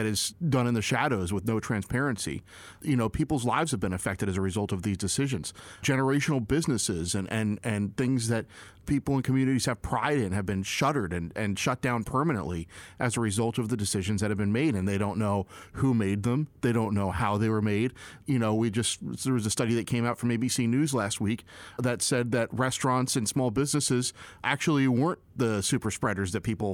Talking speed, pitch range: 220 wpm, 105-130 Hz